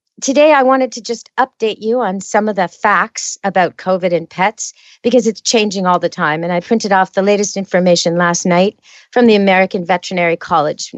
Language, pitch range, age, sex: English, 190-235 Hz, 40-59, female